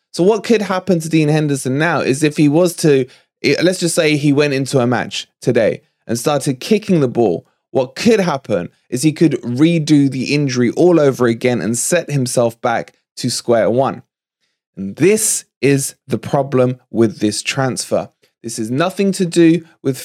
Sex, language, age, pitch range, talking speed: male, English, 20-39, 120-160 Hz, 180 wpm